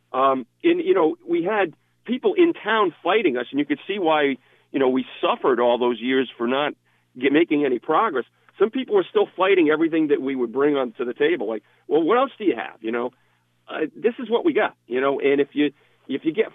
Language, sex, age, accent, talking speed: English, male, 50-69, American, 235 wpm